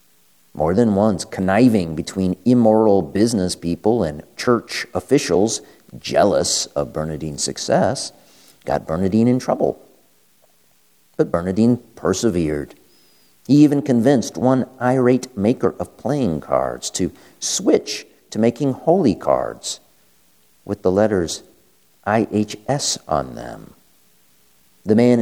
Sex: male